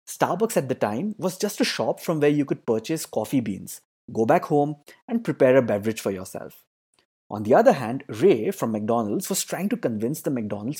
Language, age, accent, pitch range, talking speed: English, 20-39, Indian, 110-160 Hz, 205 wpm